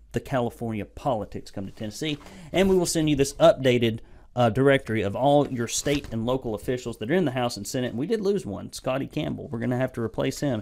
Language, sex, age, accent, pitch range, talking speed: English, male, 40-59, American, 110-155 Hz, 245 wpm